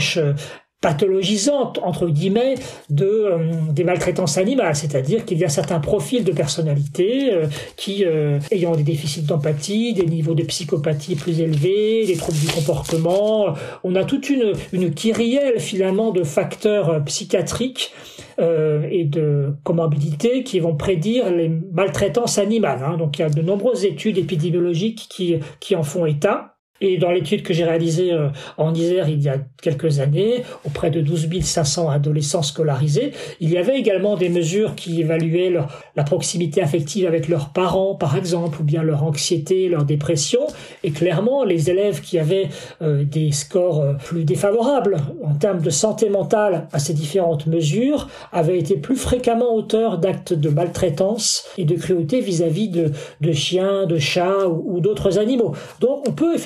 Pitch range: 160-200 Hz